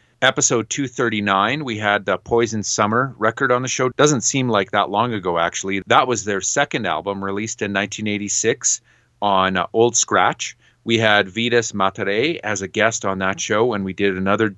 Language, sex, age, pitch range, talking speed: English, male, 30-49, 100-120 Hz, 180 wpm